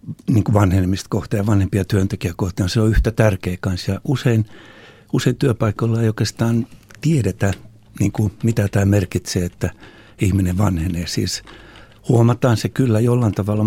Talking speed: 140 wpm